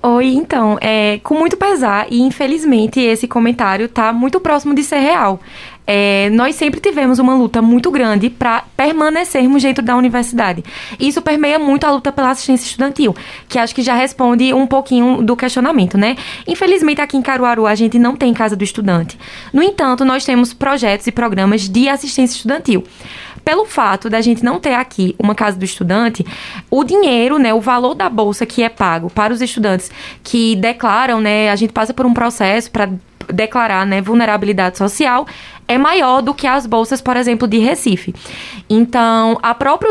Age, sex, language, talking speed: 20-39, female, Portuguese, 175 wpm